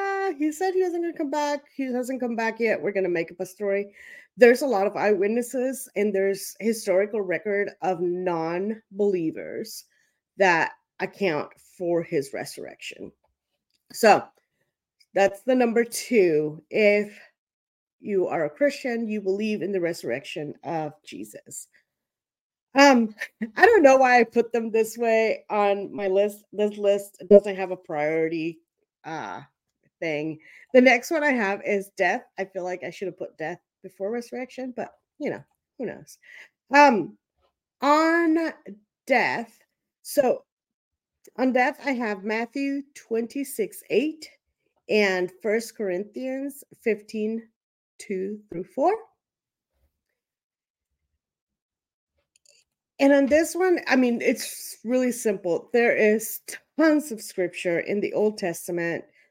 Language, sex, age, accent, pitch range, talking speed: English, female, 40-59, American, 190-265 Hz, 130 wpm